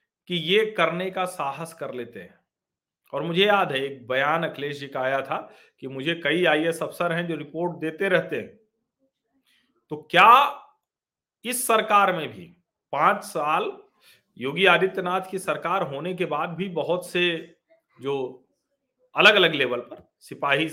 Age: 40-59